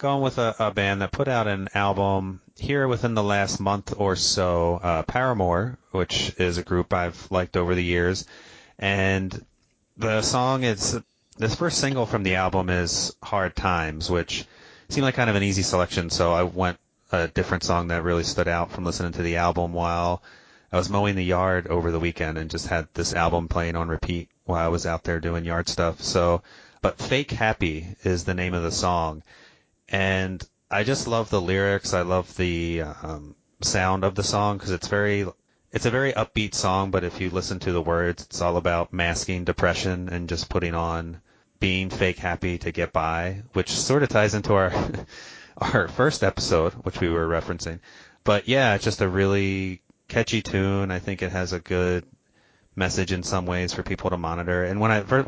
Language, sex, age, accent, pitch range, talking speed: English, male, 30-49, American, 85-100 Hz, 195 wpm